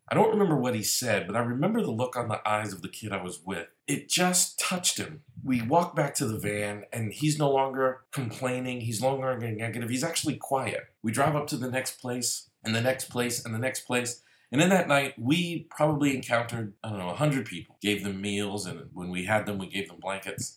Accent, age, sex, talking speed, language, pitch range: American, 40-59, male, 240 wpm, English, 110-150 Hz